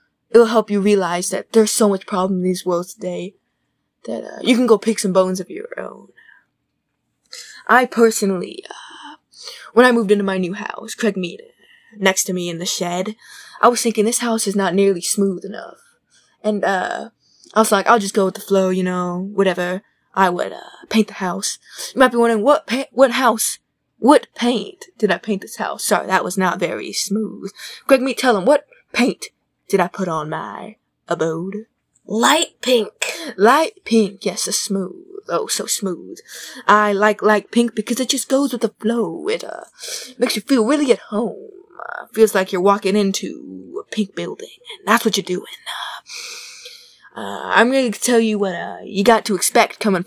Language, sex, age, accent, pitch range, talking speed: English, female, 20-39, American, 195-245 Hz, 195 wpm